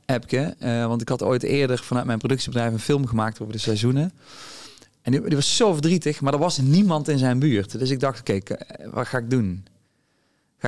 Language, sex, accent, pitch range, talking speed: Dutch, male, Dutch, 115-140 Hz, 220 wpm